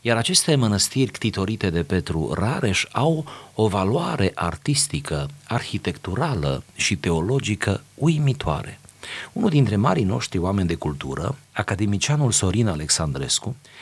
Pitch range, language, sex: 85-120 Hz, Romanian, male